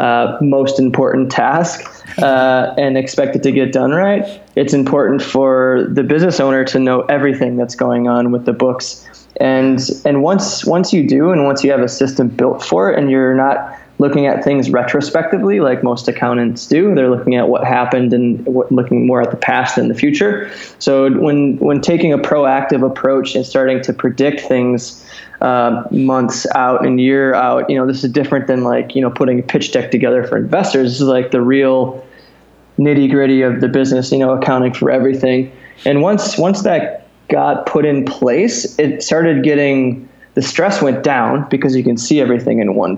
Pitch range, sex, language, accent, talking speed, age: 125-140 Hz, male, English, American, 195 wpm, 20-39